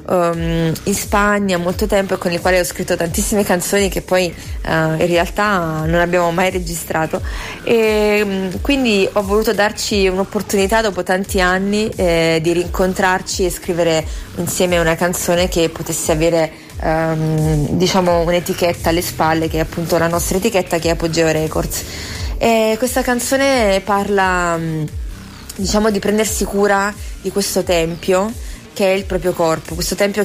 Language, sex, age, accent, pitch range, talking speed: Italian, female, 20-39, native, 170-205 Hz, 155 wpm